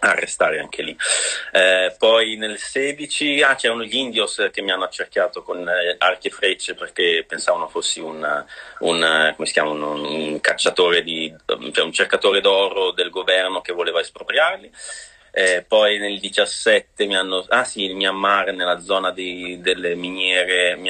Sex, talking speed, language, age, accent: male, 165 wpm, Italian, 30-49, native